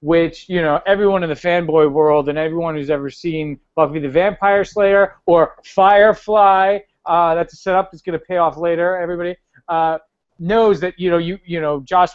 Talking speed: 195 wpm